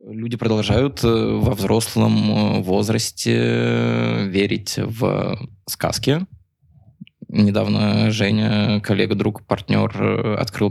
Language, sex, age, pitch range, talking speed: Russian, male, 20-39, 100-120 Hz, 75 wpm